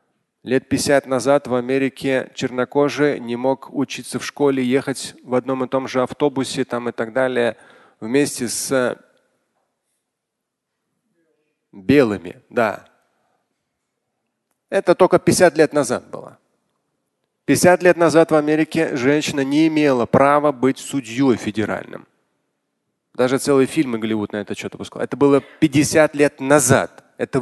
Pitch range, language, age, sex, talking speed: 125-155 Hz, Russian, 30-49, male, 125 wpm